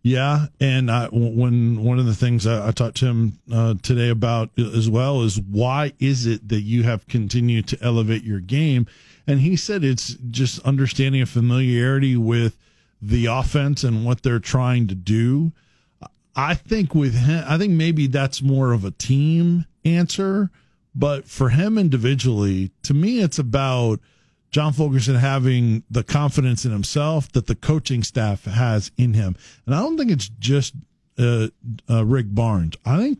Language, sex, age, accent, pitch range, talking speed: English, male, 40-59, American, 115-140 Hz, 170 wpm